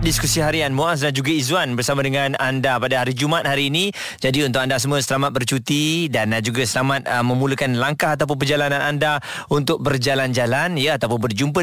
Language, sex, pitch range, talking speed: Malay, male, 135-180 Hz, 170 wpm